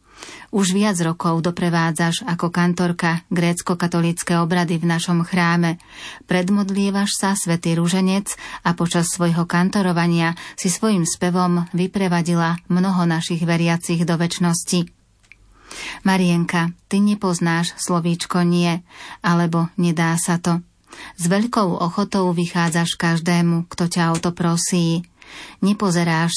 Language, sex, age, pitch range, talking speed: Slovak, female, 30-49, 170-185 Hz, 110 wpm